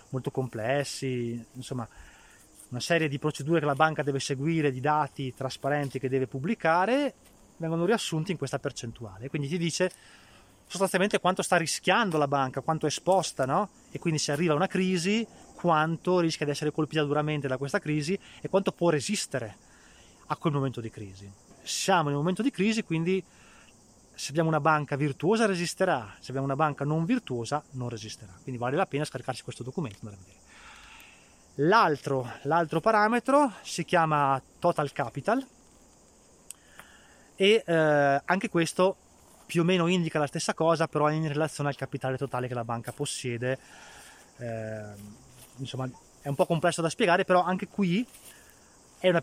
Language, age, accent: Italian, 20-39, native